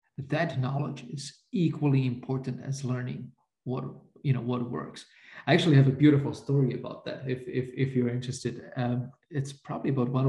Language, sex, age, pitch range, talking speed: English, male, 50-69, 125-145 Hz, 175 wpm